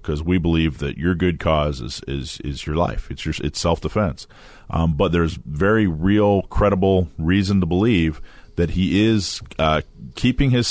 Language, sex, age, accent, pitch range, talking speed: English, male, 40-59, American, 80-100 Hz, 170 wpm